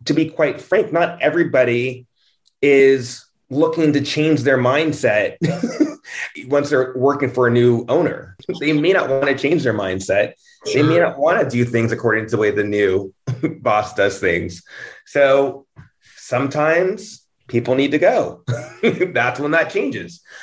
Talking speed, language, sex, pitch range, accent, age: 155 wpm, English, male, 120-145 Hz, American, 30-49